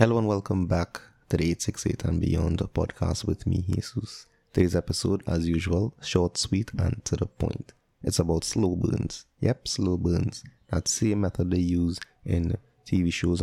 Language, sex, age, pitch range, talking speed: English, male, 20-39, 85-105 Hz, 170 wpm